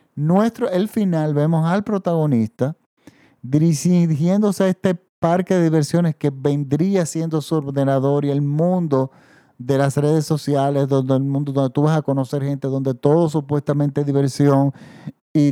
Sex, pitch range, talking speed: male, 140-175 Hz, 150 wpm